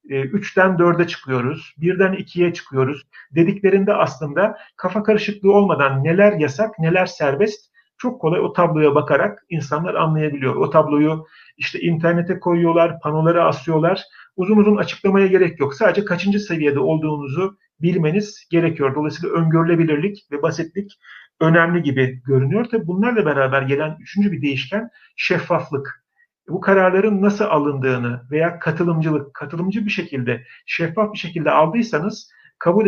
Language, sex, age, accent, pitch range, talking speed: Turkish, male, 40-59, native, 150-200 Hz, 125 wpm